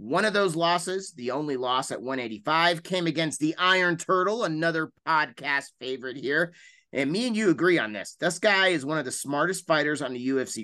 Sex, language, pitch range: male, English, 135-190 Hz